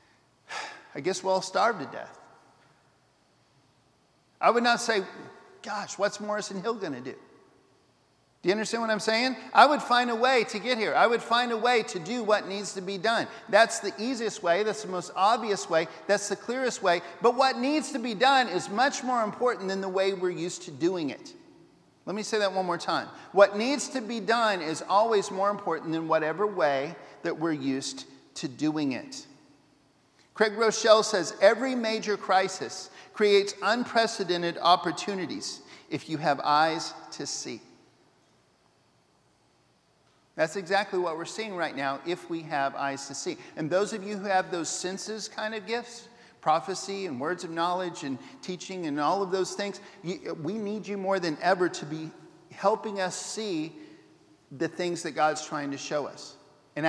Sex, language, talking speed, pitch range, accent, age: male, English, 180 wpm, 170-225 Hz, American, 50-69